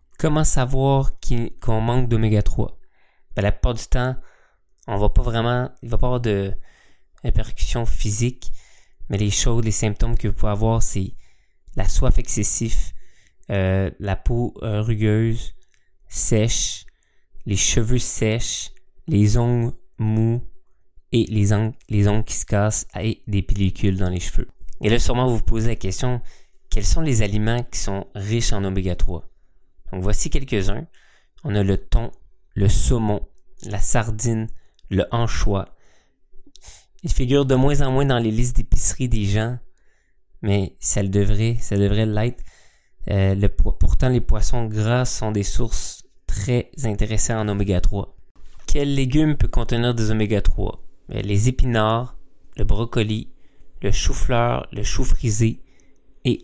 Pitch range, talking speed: 100-120 Hz, 150 wpm